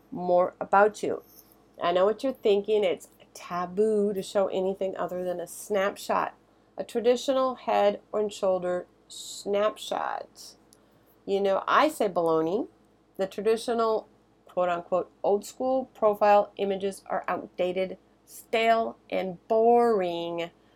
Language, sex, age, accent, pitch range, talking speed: English, female, 40-59, American, 190-245 Hz, 120 wpm